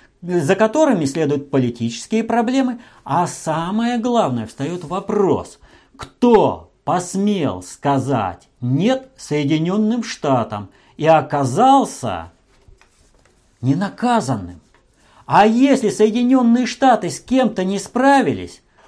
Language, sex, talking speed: Russian, male, 85 wpm